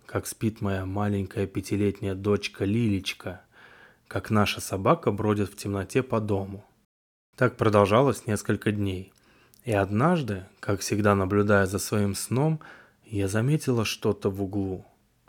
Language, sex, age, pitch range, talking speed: Russian, male, 20-39, 100-115 Hz, 125 wpm